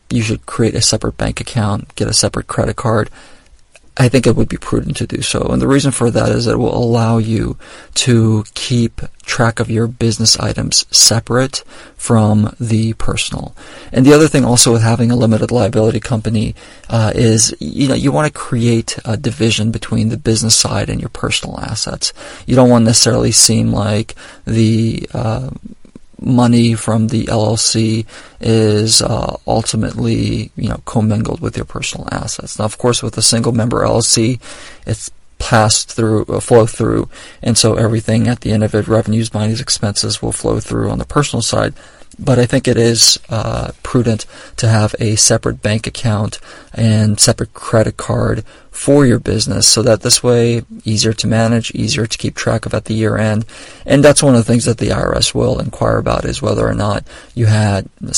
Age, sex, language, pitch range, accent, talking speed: 40-59, male, English, 110-120 Hz, American, 185 wpm